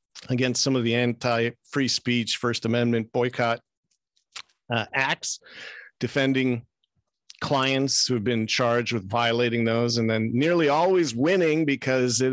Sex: male